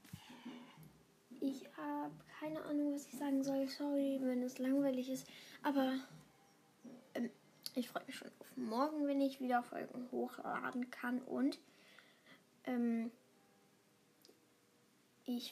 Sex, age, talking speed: female, 10-29, 115 wpm